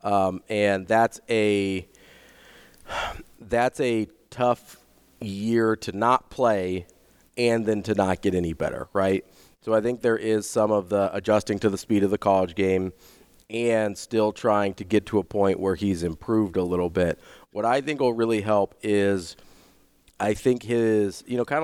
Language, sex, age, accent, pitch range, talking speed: English, male, 30-49, American, 95-110 Hz, 170 wpm